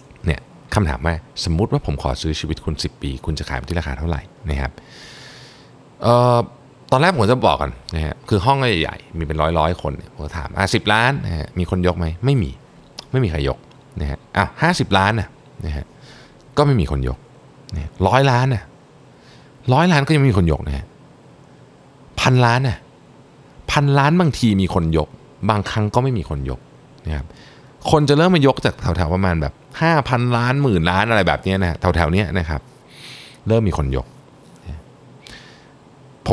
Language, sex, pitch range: Thai, male, 80-130 Hz